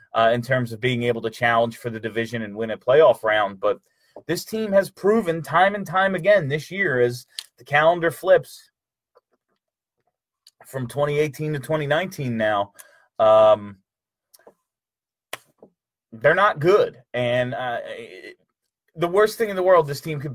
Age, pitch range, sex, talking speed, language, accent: 30-49, 115-175 Hz, male, 145 wpm, English, American